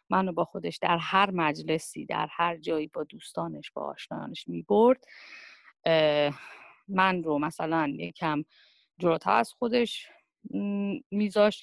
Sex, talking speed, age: female, 120 wpm, 30-49